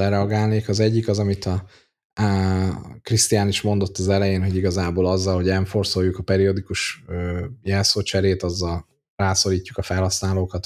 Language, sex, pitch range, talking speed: Hungarian, male, 90-100 Hz, 135 wpm